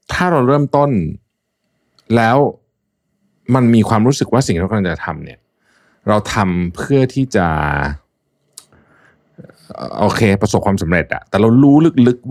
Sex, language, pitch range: male, Thai, 85-120 Hz